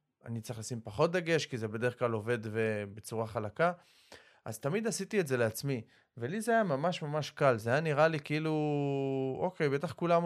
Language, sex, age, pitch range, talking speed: Hebrew, male, 20-39, 120-155 Hz, 185 wpm